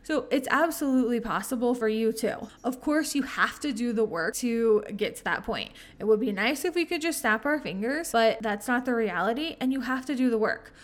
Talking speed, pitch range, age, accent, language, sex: 240 wpm, 220-275 Hz, 20-39, American, English, female